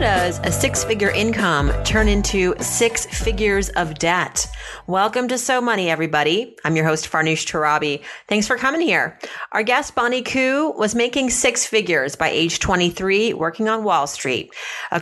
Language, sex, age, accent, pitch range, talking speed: English, female, 30-49, American, 170-215 Hz, 160 wpm